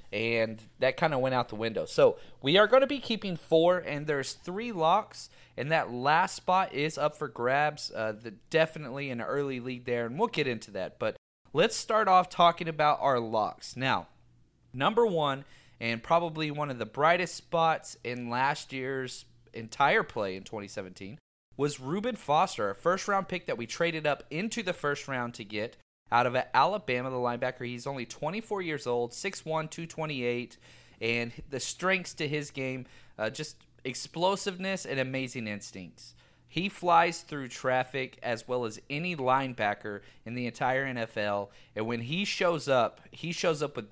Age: 30-49